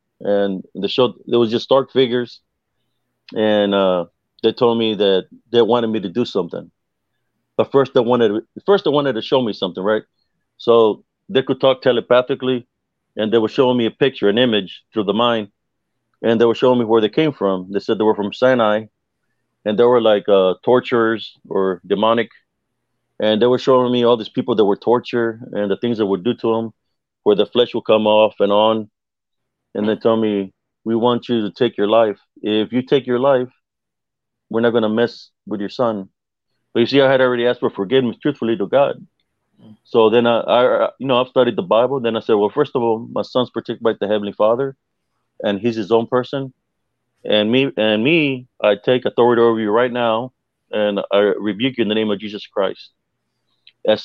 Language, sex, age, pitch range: English, male, 30-49, 105-125 Hz